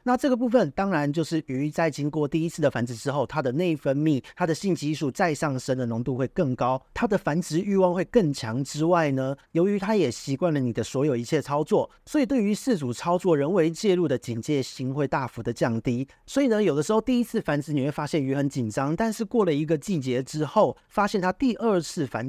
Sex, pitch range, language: male, 130-175 Hz, Chinese